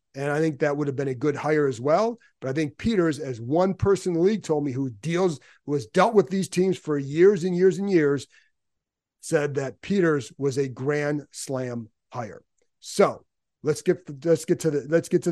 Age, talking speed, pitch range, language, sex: 40-59, 220 wpm, 140-175 Hz, English, male